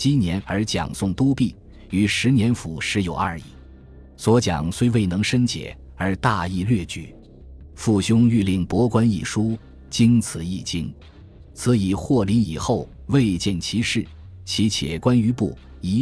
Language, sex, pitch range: Chinese, male, 85-115 Hz